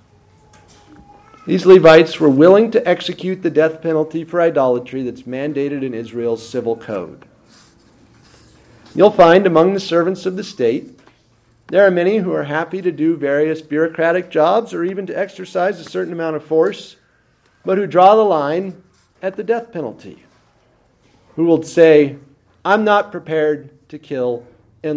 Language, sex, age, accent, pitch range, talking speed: English, male, 40-59, American, 120-180 Hz, 150 wpm